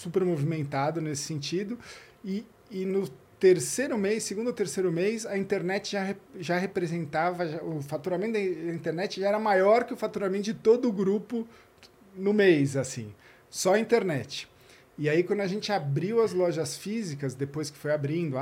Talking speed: 170 wpm